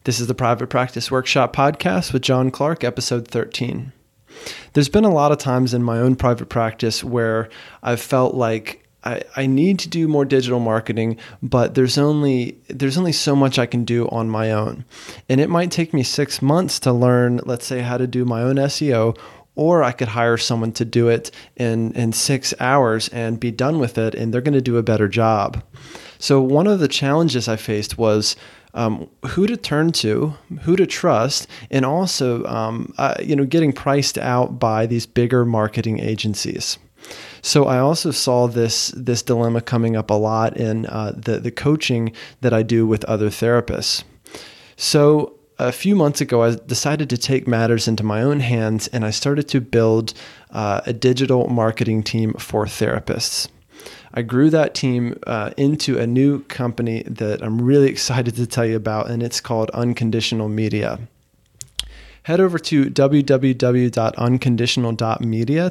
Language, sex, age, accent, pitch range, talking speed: English, male, 30-49, American, 115-140 Hz, 175 wpm